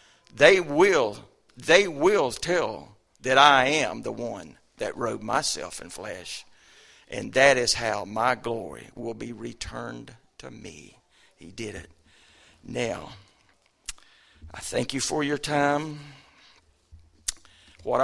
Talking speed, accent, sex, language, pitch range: 125 wpm, American, male, English, 100-135 Hz